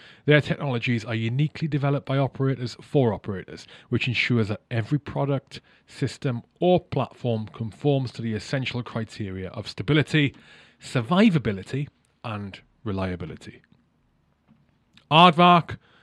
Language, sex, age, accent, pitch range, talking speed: English, male, 30-49, British, 110-135 Hz, 105 wpm